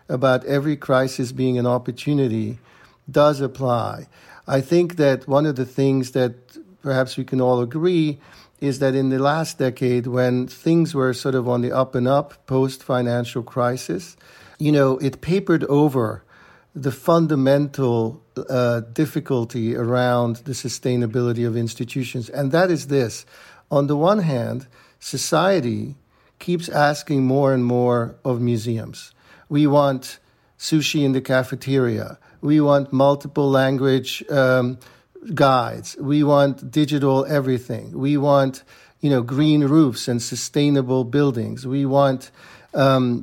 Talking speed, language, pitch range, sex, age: 135 wpm, English, 125-145 Hz, male, 50-69